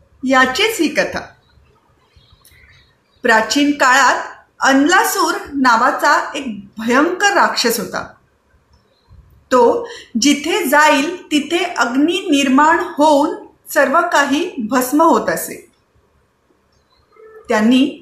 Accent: native